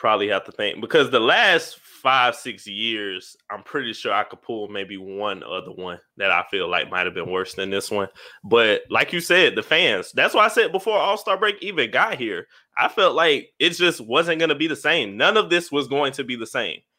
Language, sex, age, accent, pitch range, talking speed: English, male, 20-39, American, 125-175 Hz, 235 wpm